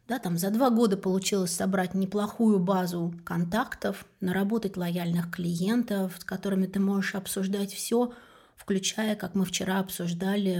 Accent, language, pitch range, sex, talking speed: native, Russian, 185-220 Hz, female, 135 wpm